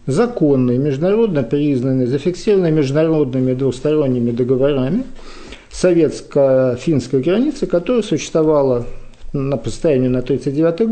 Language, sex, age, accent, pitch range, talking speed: Russian, male, 50-69, native, 130-180 Hz, 80 wpm